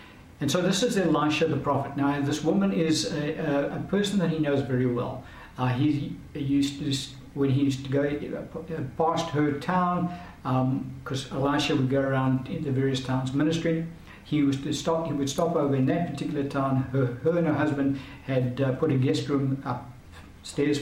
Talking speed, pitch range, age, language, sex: 195 wpm, 130-155 Hz, 60-79, English, male